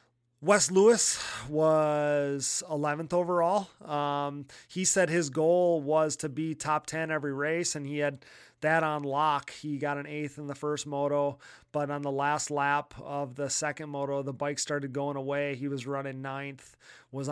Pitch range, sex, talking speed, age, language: 140-155 Hz, male, 175 wpm, 30-49, English